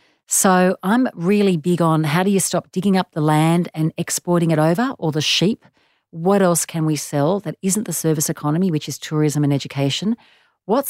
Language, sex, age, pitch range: English, female, 40-59, 145-185 Hz